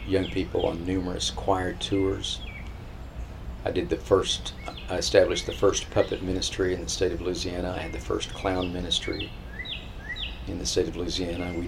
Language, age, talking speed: English, 50-69, 170 wpm